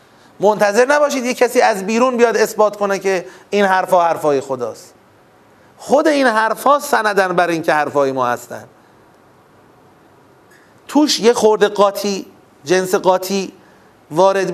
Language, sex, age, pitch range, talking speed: Persian, male, 30-49, 160-225 Hz, 130 wpm